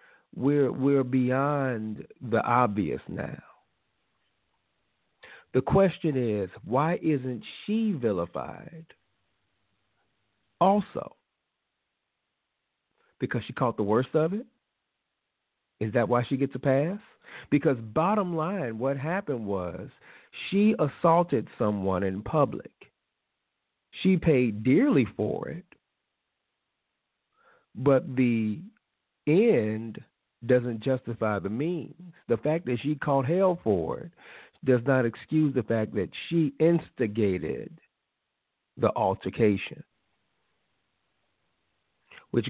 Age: 40-59